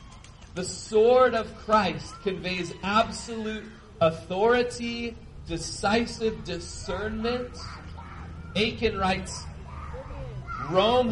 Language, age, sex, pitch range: English, 30-49, male, 115-185 Hz